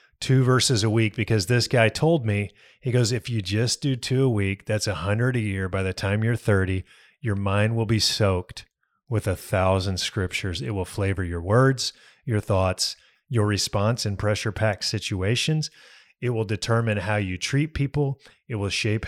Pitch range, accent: 105-130 Hz, American